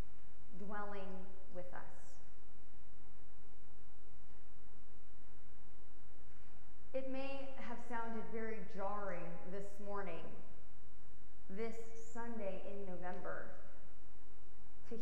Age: 30-49